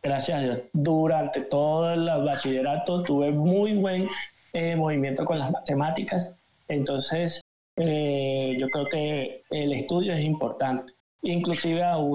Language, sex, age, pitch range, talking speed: Spanish, male, 20-39, 145-175 Hz, 125 wpm